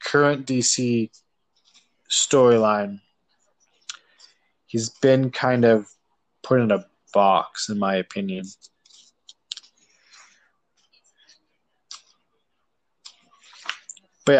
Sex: male